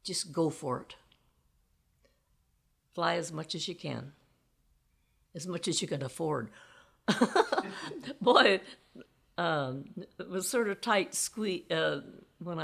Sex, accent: female, American